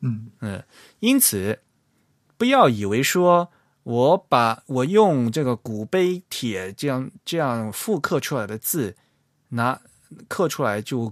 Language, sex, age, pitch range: Chinese, male, 20-39, 110-155 Hz